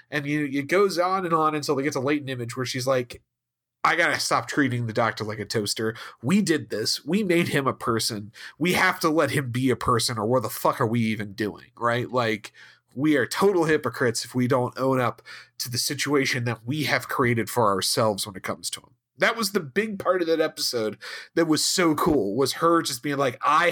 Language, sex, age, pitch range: English, male, 40-59, 120-160 Hz